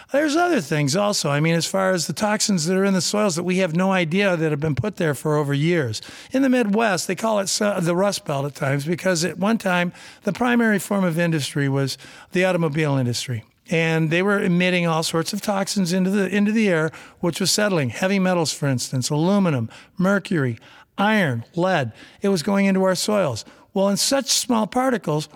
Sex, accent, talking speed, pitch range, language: male, American, 205 wpm, 155-195 Hz, English